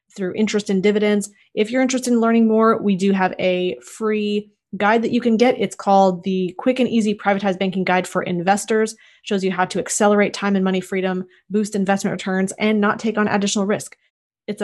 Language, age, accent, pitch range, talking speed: English, 30-49, American, 190-220 Hz, 210 wpm